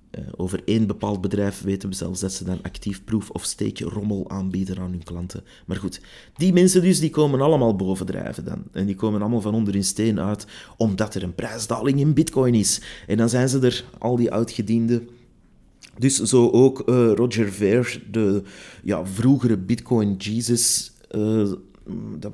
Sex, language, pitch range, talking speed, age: male, Dutch, 95-115 Hz, 160 wpm, 30-49